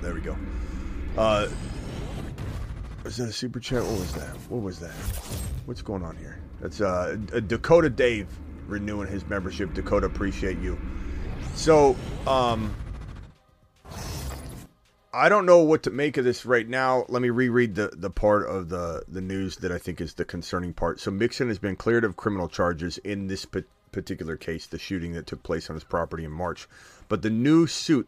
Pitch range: 85-110 Hz